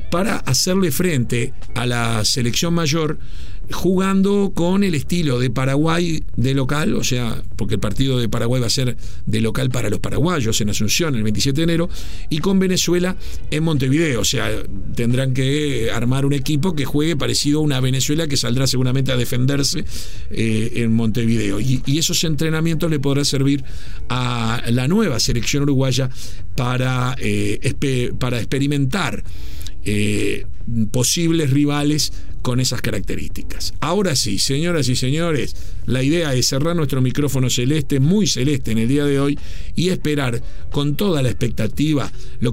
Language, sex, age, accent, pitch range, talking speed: Spanish, male, 50-69, Argentinian, 115-150 Hz, 155 wpm